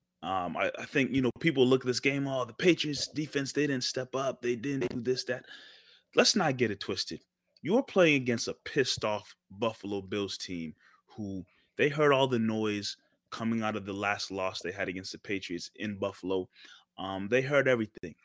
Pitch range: 105-130 Hz